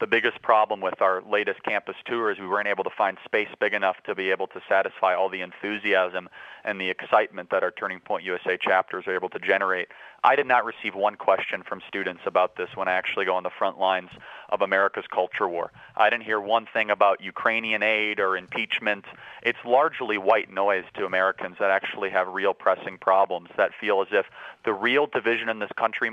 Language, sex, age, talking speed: English, male, 40-59, 210 wpm